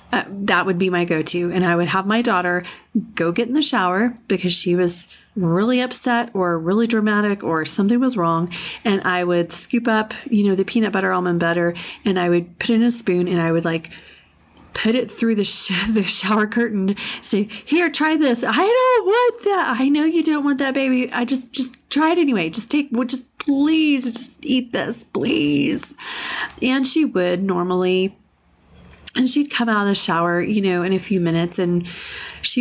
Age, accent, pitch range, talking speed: 30-49, American, 180-245 Hz, 200 wpm